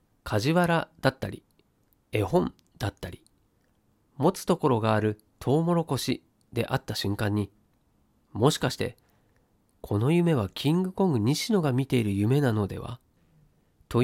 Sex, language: male, Japanese